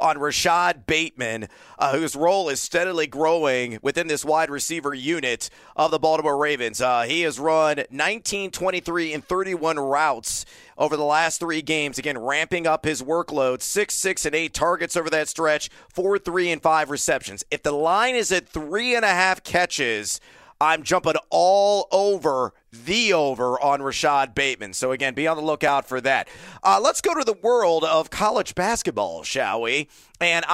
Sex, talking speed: male, 175 wpm